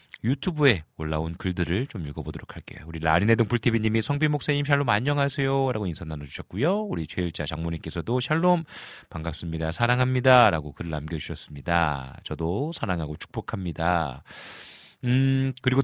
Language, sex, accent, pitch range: Korean, male, native, 85-135 Hz